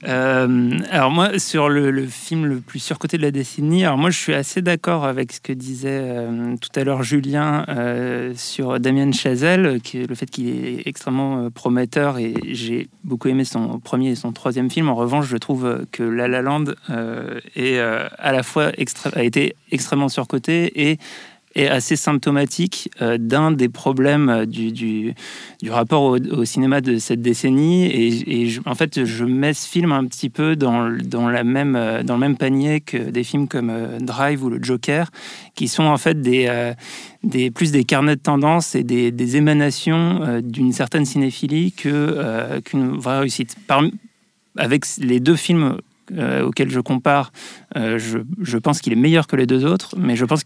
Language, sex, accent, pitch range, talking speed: French, male, French, 120-150 Hz, 195 wpm